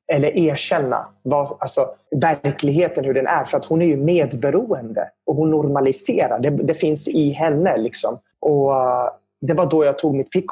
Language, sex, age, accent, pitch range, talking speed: Swedish, male, 20-39, native, 130-160 Hz, 175 wpm